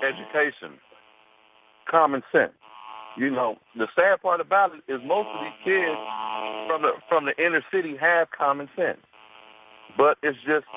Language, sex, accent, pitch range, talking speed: English, male, American, 110-160 Hz, 150 wpm